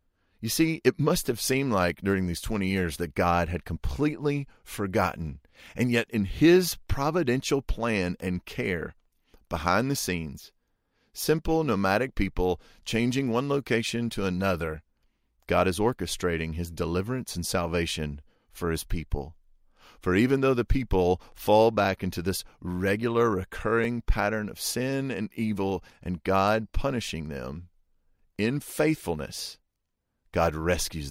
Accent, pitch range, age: American, 85-120 Hz, 40-59